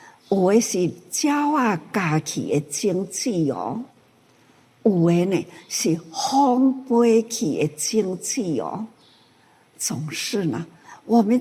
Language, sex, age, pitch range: Chinese, female, 60-79, 170-245 Hz